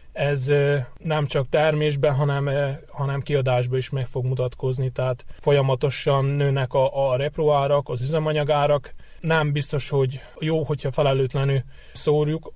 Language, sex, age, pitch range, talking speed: Hungarian, male, 20-39, 130-140 Hz, 135 wpm